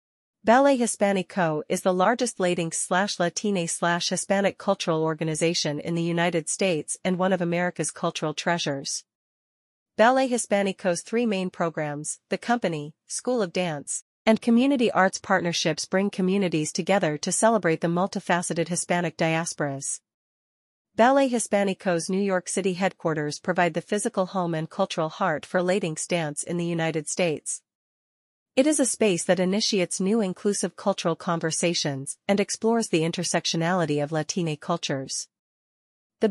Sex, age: female, 40-59